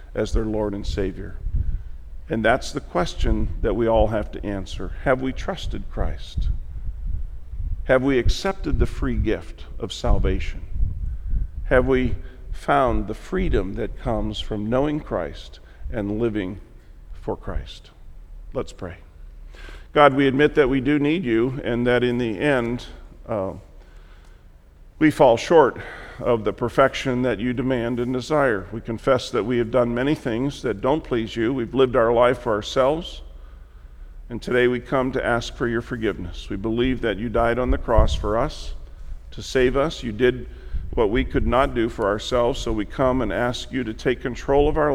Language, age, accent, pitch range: English, 50-69, American, 80-125 Hz